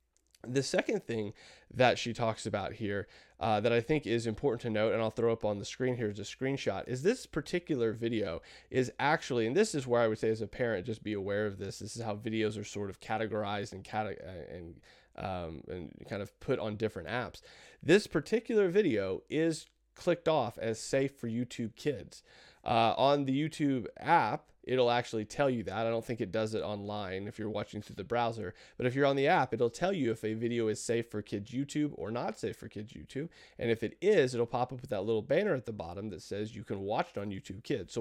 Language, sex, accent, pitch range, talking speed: English, male, American, 105-135 Hz, 230 wpm